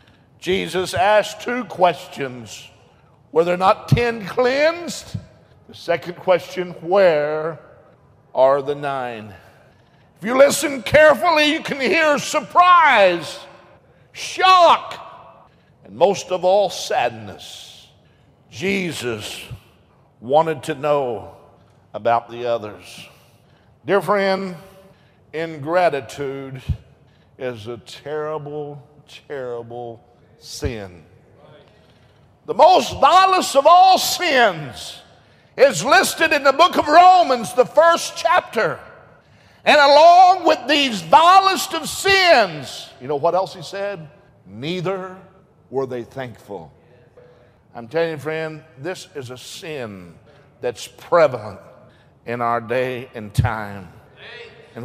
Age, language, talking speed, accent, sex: 50-69, English, 105 wpm, American, male